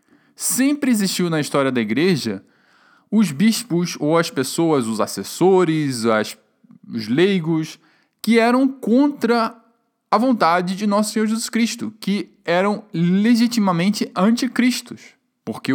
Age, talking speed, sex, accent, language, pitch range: 20-39, 120 wpm, male, Brazilian, Portuguese, 155-230 Hz